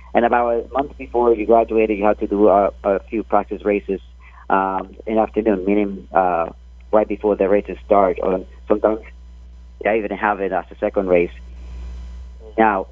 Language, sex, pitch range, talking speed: English, male, 75-105 Hz, 175 wpm